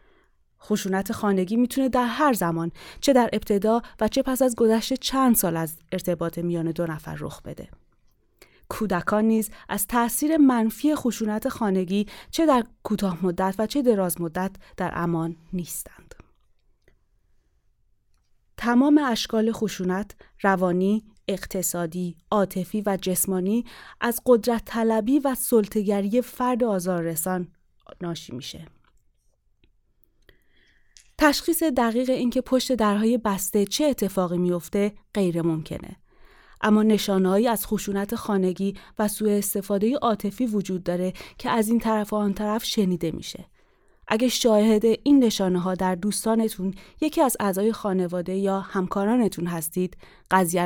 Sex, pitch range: female, 185-235 Hz